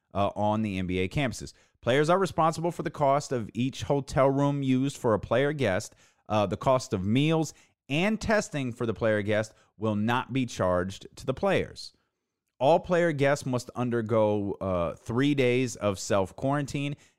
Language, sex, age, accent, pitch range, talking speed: English, male, 30-49, American, 105-155 Hz, 170 wpm